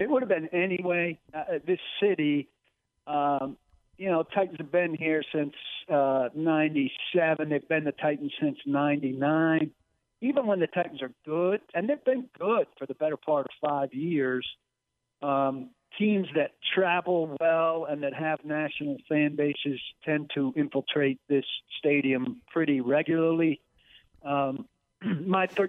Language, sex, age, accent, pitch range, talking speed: English, male, 50-69, American, 130-160 Hz, 140 wpm